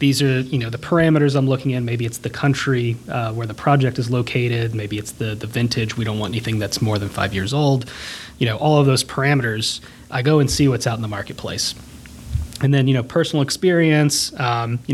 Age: 30-49